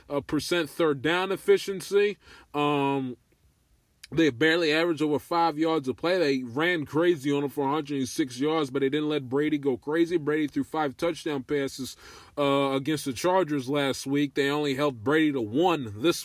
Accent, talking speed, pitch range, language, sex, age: American, 175 wpm, 130-155 Hz, English, male, 20-39